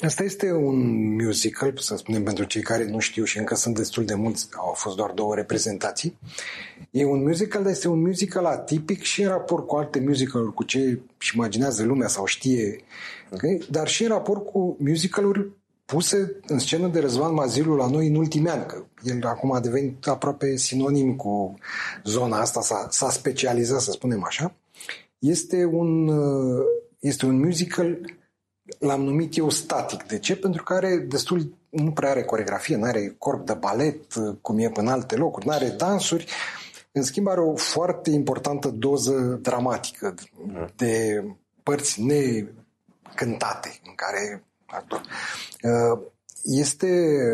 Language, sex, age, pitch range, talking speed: Romanian, male, 40-59, 115-165 Hz, 155 wpm